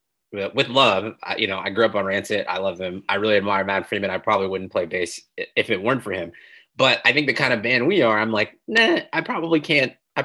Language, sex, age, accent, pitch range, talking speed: English, male, 20-39, American, 100-130 Hz, 250 wpm